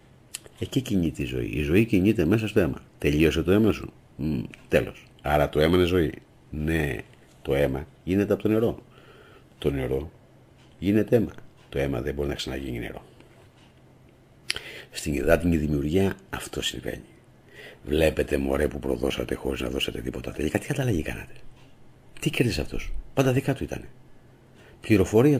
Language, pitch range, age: Greek, 75-105 Hz, 50-69